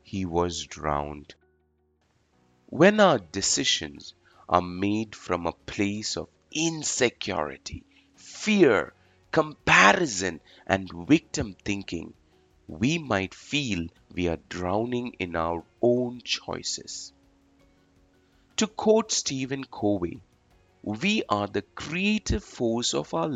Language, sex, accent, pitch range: English, male, Indian, 85-120 Hz